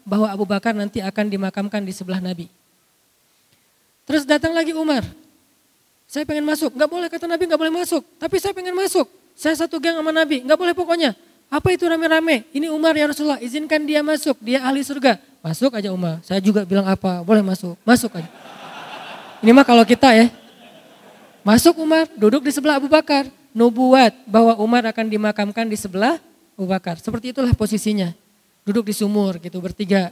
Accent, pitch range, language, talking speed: native, 205-300 Hz, Indonesian, 175 wpm